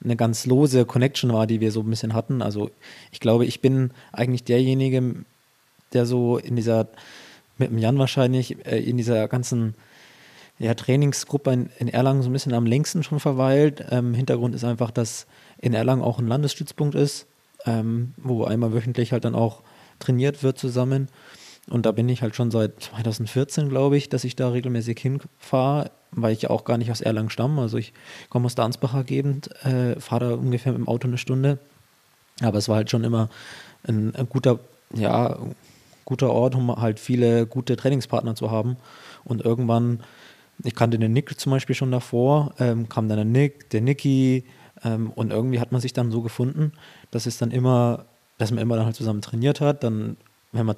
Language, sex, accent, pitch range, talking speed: German, male, German, 115-130 Hz, 190 wpm